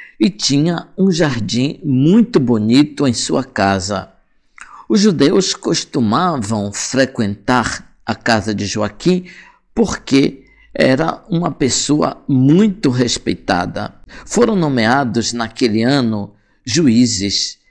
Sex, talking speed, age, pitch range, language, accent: male, 95 wpm, 50-69, 110-150 Hz, Portuguese, Brazilian